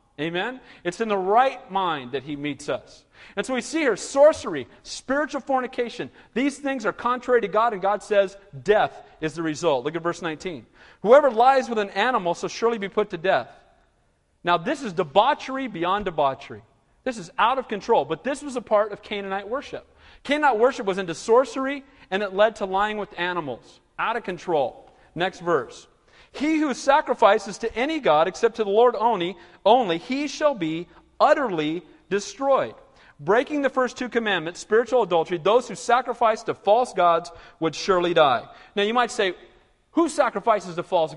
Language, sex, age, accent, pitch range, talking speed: English, male, 40-59, American, 165-245 Hz, 180 wpm